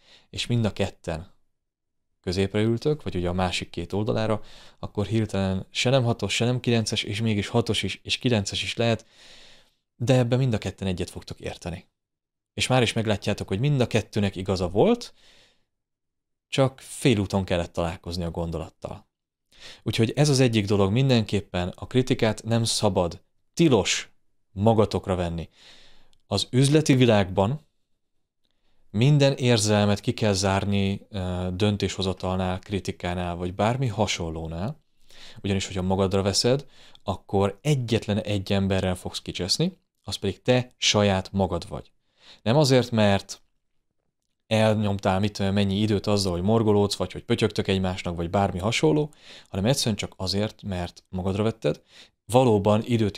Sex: male